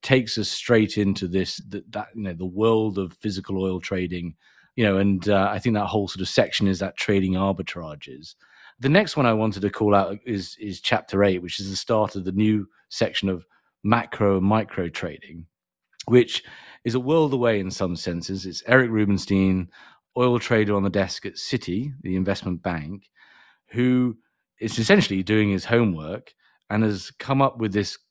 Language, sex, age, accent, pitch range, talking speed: English, male, 30-49, British, 95-115 Hz, 190 wpm